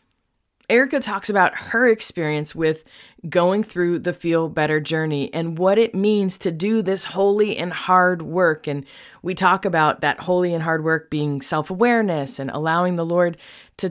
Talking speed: 170 wpm